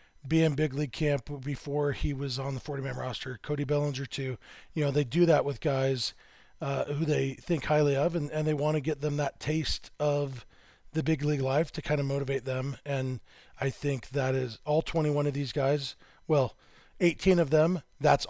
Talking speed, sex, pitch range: 205 wpm, male, 135-155 Hz